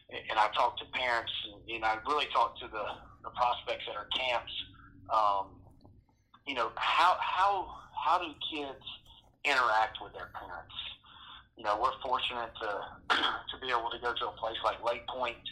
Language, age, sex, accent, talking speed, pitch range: English, 30-49, male, American, 180 wpm, 110-130 Hz